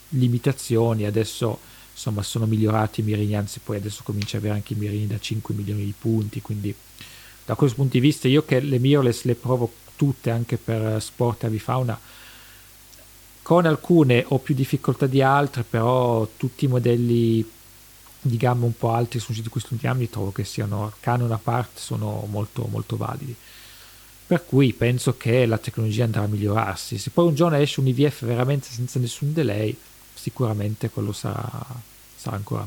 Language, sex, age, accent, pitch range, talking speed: English, male, 40-59, Italian, 110-130 Hz, 180 wpm